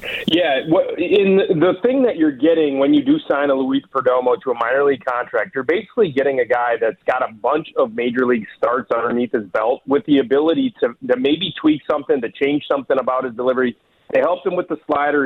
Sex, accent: male, American